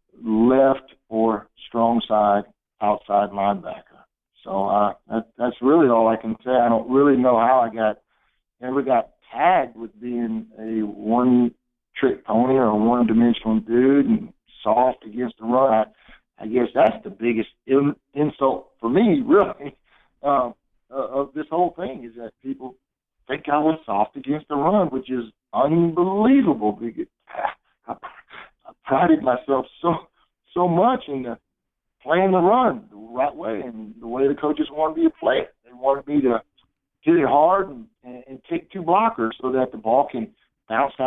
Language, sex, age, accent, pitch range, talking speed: English, male, 60-79, American, 115-150 Hz, 165 wpm